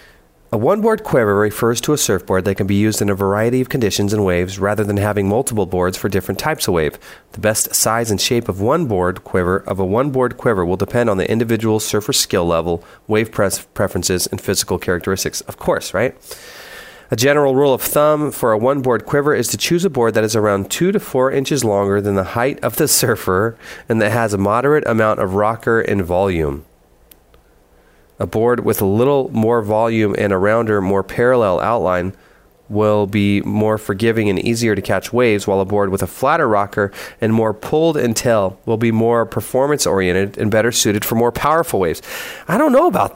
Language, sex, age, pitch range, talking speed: English, male, 30-49, 100-135 Hz, 205 wpm